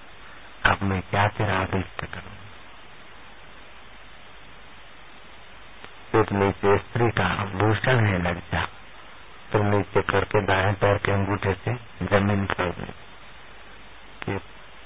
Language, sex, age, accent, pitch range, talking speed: Hindi, male, 50-69, native, 95-120 Hz, 105 wpm